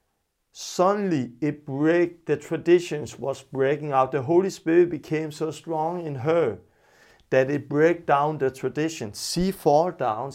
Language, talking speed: English, 145 wpm